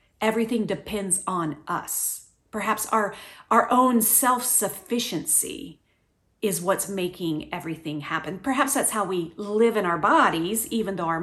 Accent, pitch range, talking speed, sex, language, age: American, 195-265 Hz, 135 wpm, female, English, 40-59